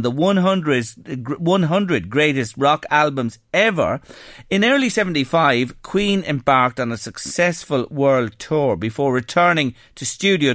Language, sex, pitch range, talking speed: English, male, 130-195 Hz, 120 wpm